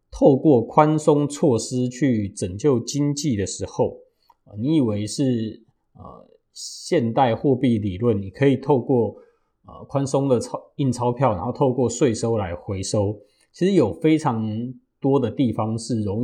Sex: male